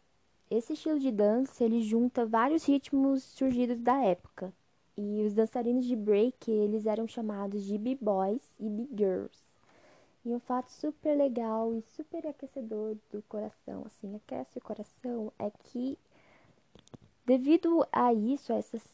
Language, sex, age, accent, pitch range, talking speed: Portuguese, female, 10-29, Brazilian, 215-265 Hz, 135 wpm